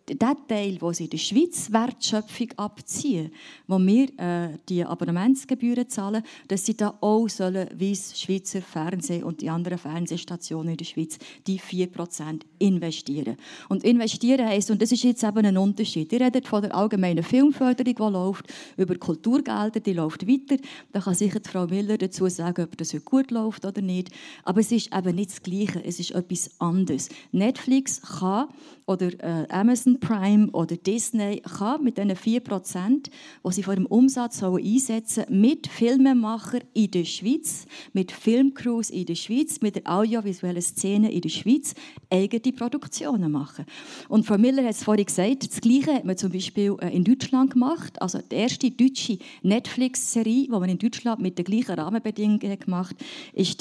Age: 30-49